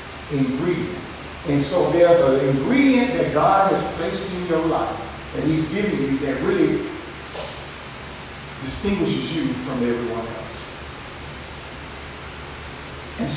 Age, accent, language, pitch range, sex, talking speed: 40-59, American, English, 140-215 Hz, male, 110 wpm